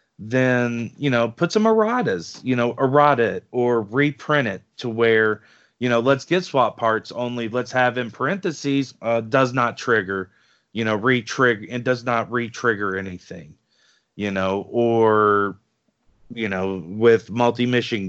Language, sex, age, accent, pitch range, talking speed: English, male, 40-59, American, 105-125 Hz, 150 wpm